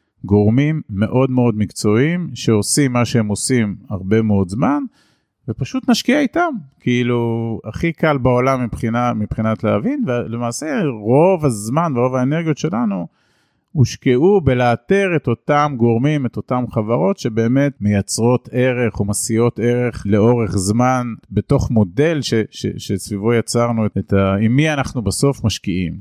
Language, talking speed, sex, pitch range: Hebrew, 130 wpm, male, 105-140 Hz